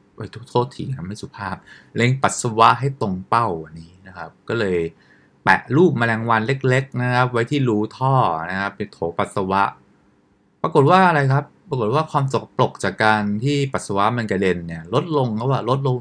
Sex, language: male, English